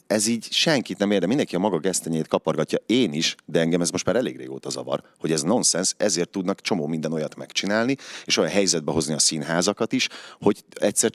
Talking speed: 205 wpm